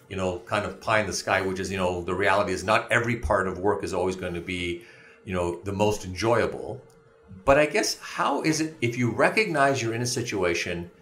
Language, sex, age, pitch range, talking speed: English, male, 40-59, 95-115 Hz, 230 wpm